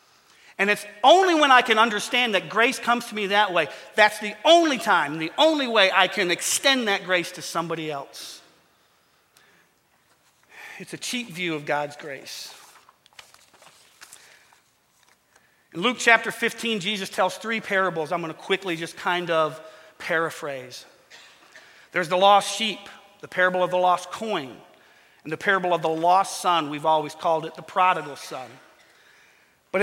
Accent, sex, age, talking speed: American, male, 40-59, 155 wpm